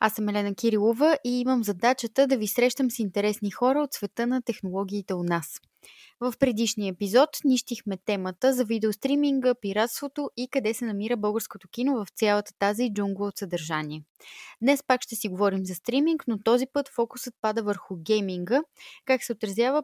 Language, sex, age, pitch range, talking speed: Bulgarian, female, 20-39, 195-250 Hz, 170 wpm